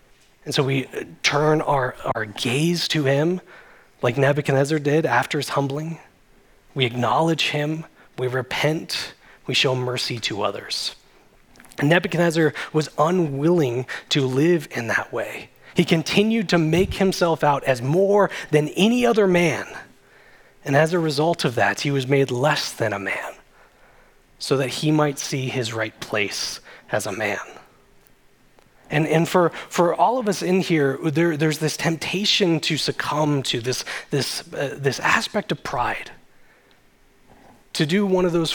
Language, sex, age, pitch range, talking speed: English, male, 20-39, 135-165 Hz, 155 wpm